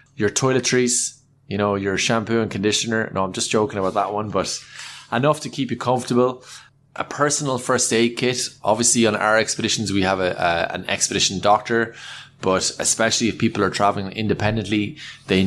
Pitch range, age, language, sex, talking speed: 95-115 Hz, 20-39, English, male, 175 wpm